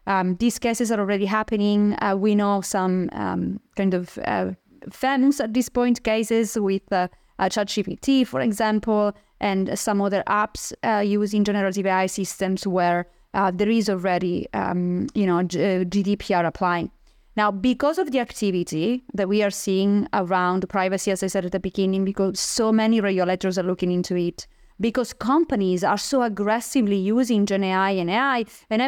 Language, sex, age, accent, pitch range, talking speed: English, female, 30-49, Italian, 195-245 Hz, 170 wpm